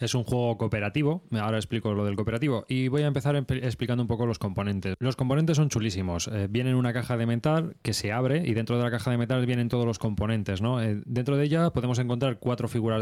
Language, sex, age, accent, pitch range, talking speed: Spanish, male, 20-39, Spanish, 110-135 Hz, 240 wpm